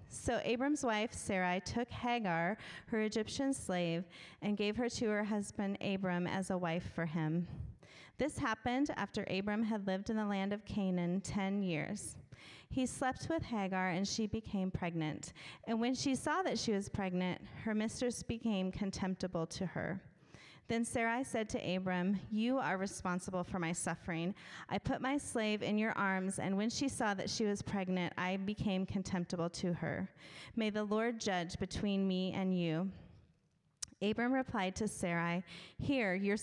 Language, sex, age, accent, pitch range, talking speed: English, female, 30-49, American, 180-225 Hz, 165 wpm